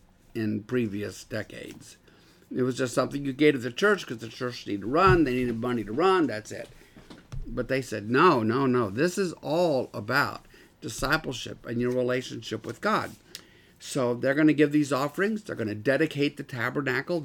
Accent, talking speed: American, 190 wpm